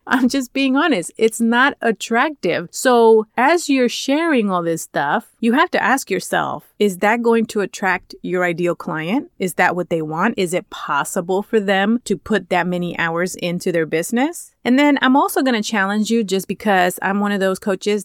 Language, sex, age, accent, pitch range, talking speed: English, female, 30-49, American, 180-225 Hz, 200 wpm